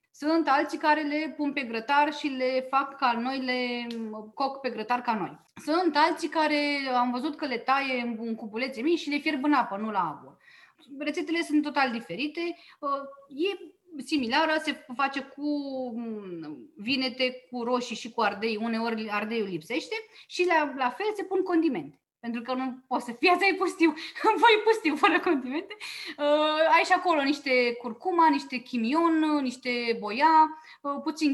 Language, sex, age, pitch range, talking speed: Romanian, female, 20-39, 250-325 Hz, 160 wpm